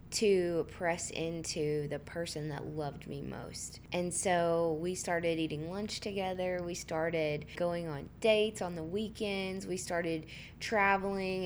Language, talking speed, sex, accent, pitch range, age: English, 140 wpm, female, American, 160-195 Hz, 20-39